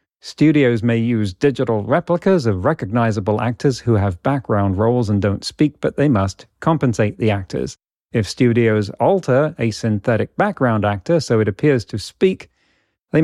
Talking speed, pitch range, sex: 155 wpm, 105-140 Hz, male